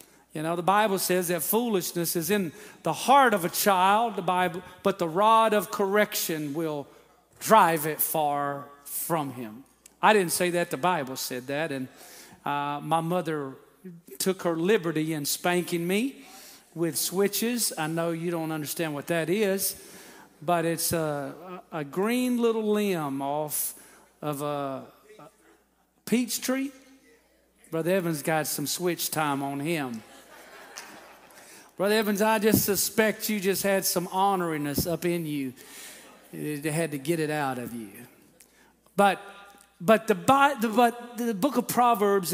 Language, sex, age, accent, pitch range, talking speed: English, male, 40-59, American, 160-215 Hz, 150 wpm